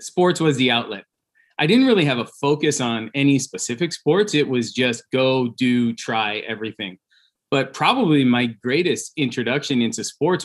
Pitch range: 115-135 Hz